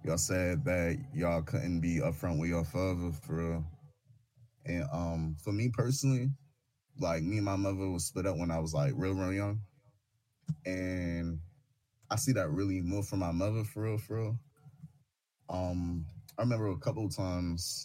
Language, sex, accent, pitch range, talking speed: English, male, American, 85-120 Hz, 175 wpm